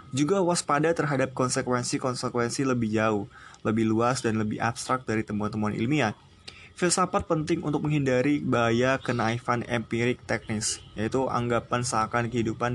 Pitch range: 115-140 Hz